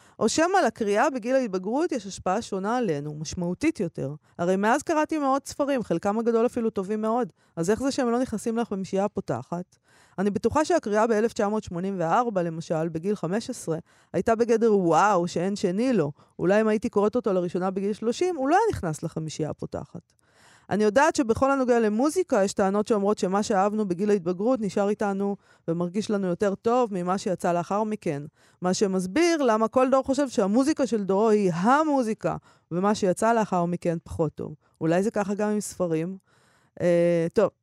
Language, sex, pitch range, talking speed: Hebrew, female, 175-235 Hz, 165 wpm